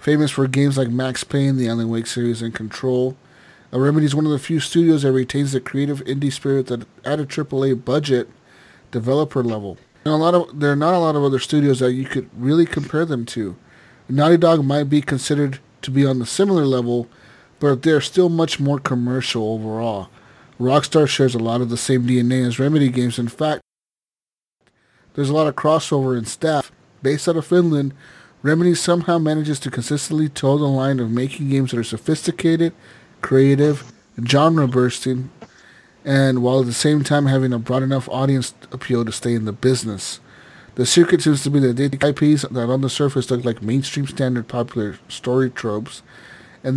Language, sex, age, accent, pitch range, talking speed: English, male, 30-49, American, 125-150 Hz, 190 wpm